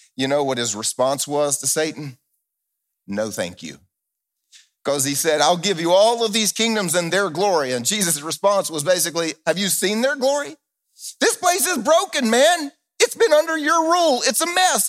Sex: male